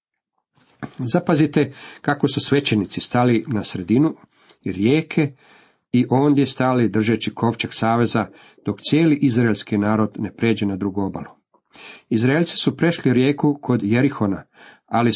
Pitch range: 105-125 Hz